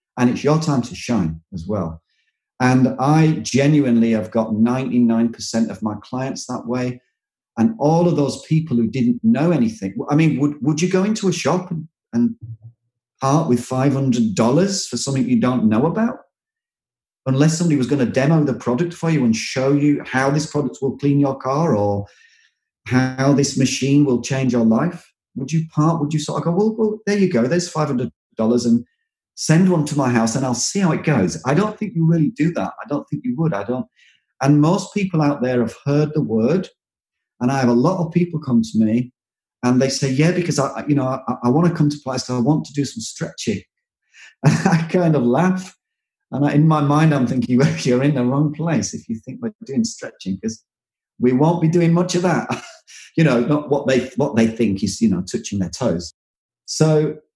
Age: 30-49